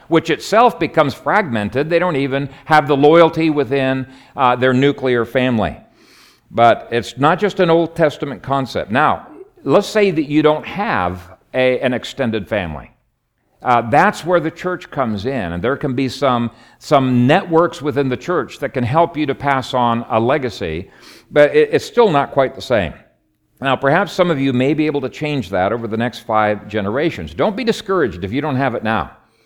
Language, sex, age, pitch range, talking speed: English, male, 50-69, 115-150 Hz, 185 wpm